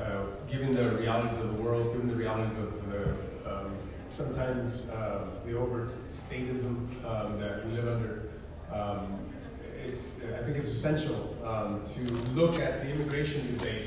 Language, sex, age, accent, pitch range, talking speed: English, male, 30-49, American, 110-135 Hz, 155 wpm